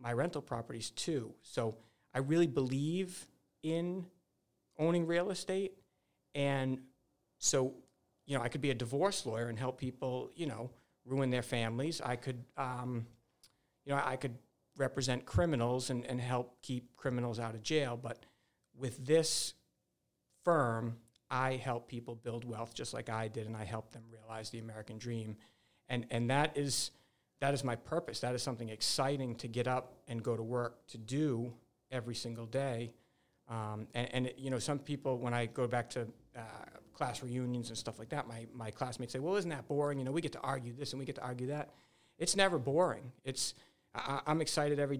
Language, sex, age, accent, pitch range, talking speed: English, male, 50-69, American, 120-145 Hz, 190 wpm